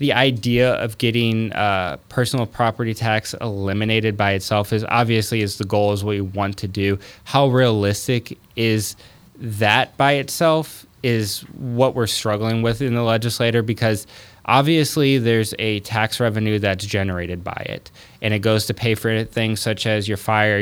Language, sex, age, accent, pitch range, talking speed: English, male, 20-39, American, 105-120 Hz, 165 wpm